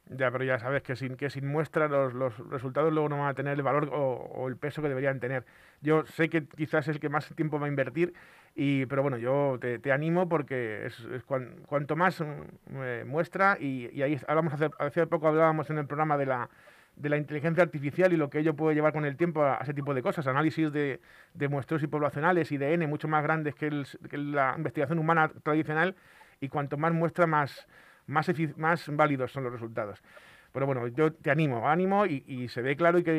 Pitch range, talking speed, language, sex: 140-160 Hz, 235 wpm, Spanish, male